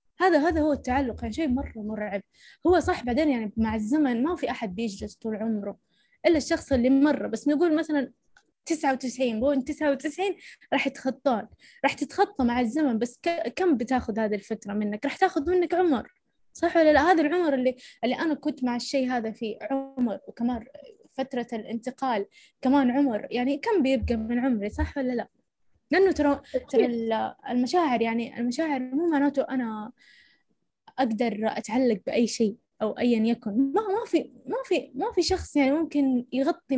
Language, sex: Arabic, female